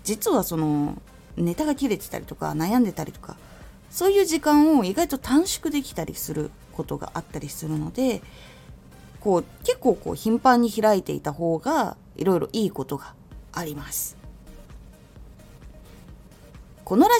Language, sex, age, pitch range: Japanese, female, 20-39, 165-260 Hz